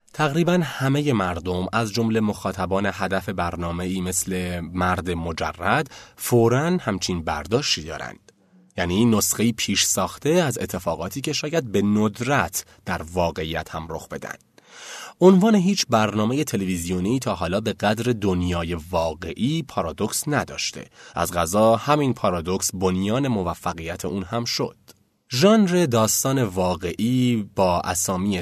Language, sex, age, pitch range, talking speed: Persian, male, 30-49, 90-120 Hz, 120 wpm